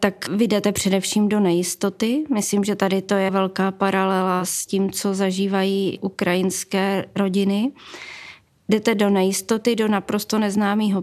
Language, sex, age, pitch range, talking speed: Czech, female, 20-39, 190-215 Hz, 135 wpm